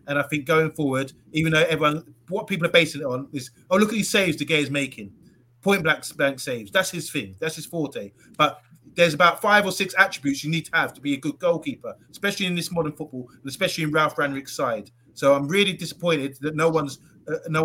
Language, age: English, 30-49